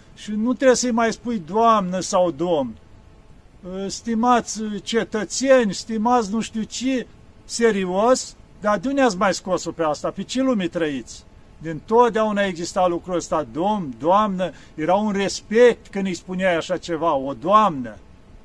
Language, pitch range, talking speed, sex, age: Romanian, 170-235 Hz, 135 wpm, male, 50-69